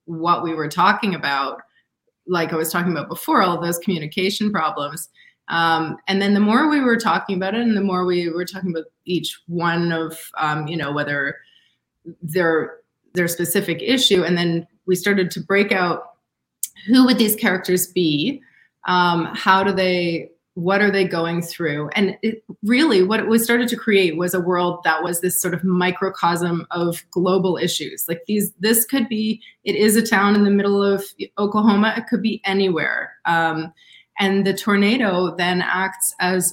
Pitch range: 170-205 Hz